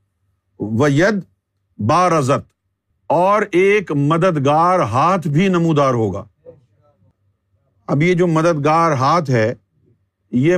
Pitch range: 110-180 Hz